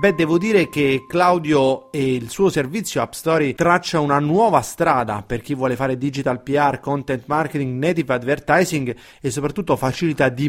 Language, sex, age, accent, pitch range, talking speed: Italian, male, 30-49, native, 130-165 Hz, 165 wpm